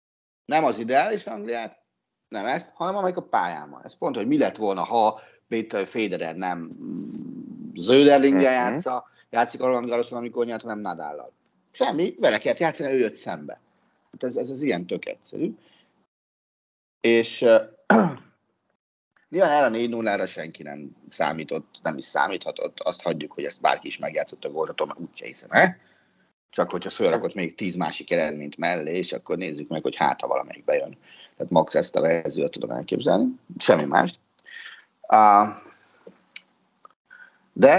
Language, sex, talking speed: Hungarian, male, 150 wpm